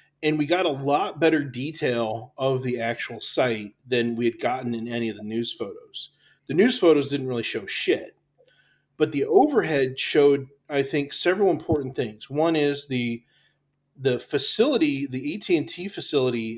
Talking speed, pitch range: 165 wpm, 120-145 Hz